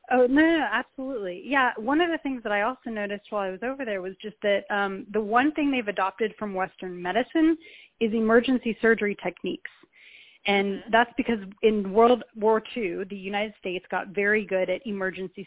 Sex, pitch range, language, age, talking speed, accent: female, 190-225 Hz, English, 30-49, 195 wpm, American